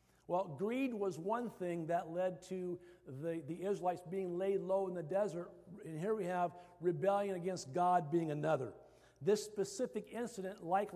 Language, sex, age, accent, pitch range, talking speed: English, male, 50-69, American, 175-220 Hz, 165 wpm